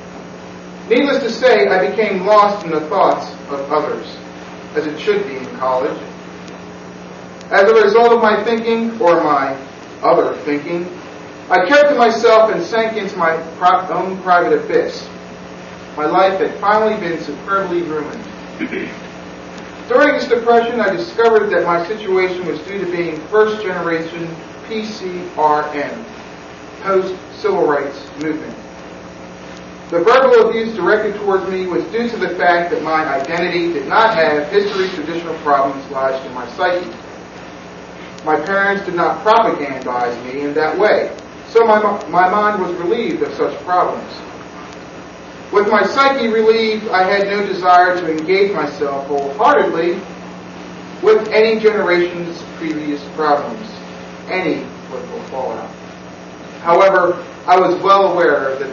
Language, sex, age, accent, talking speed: English, male, 40-59, American, 135 wpm